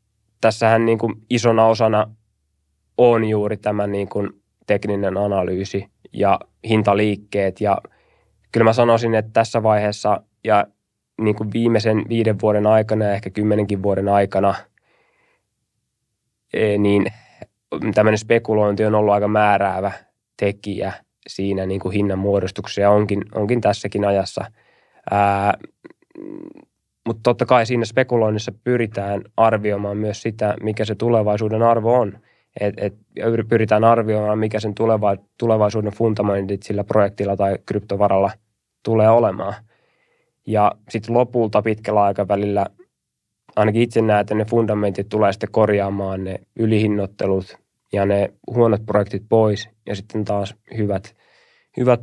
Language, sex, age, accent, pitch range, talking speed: Finnish, male, 20-39, native, 100-115 Hz, 120 wpm